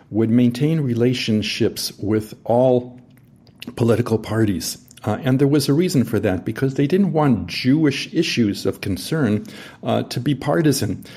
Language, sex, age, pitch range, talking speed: English, male, 50-69, 100-125 Hz, 145 wpm